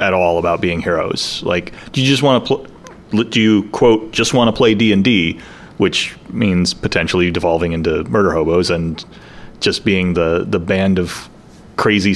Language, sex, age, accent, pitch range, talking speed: English, male, 30-49, American, 90-110 Hz, 175 wpm